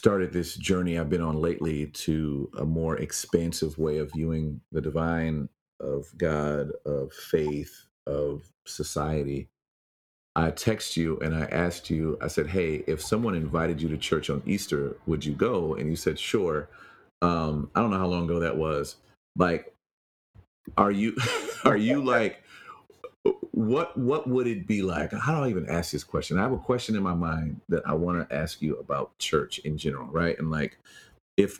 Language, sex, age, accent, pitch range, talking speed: English, male, 40-59, American, 75-95 Hz, 180 wpm